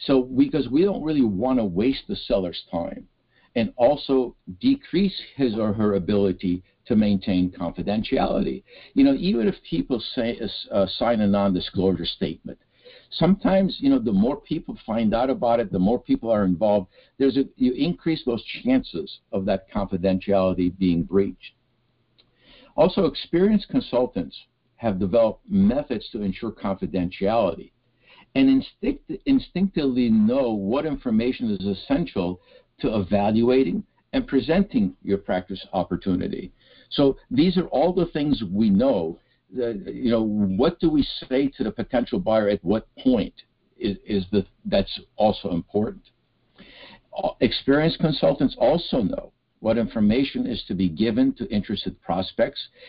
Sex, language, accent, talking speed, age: male, English, American, 140 wpm, 60-79